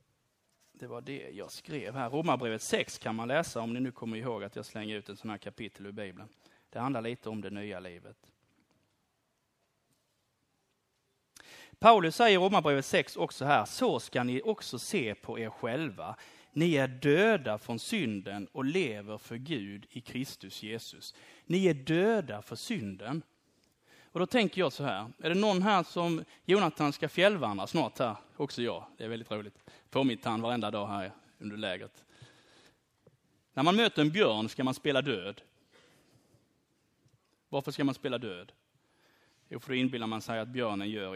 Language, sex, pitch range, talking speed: Swedish, male, 105-155 Hz, 170 wpm